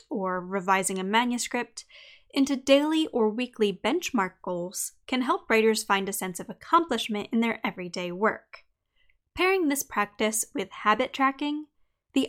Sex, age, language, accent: female, 10-29, English, American